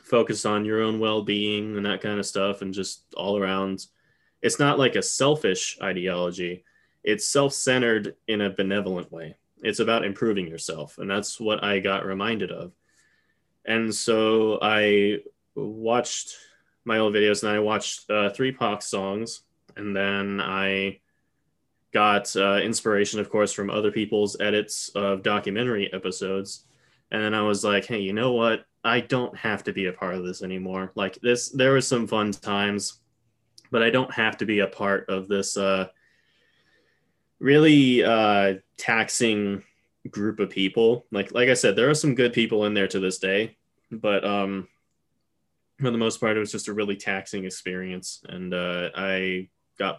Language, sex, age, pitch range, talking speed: English, male, 20-39, 95-110 Hz, 170 wpm